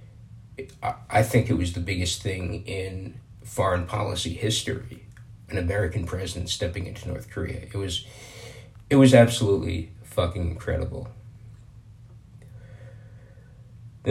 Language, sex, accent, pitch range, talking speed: English, male, American, 95-115 Hz, 110 wpm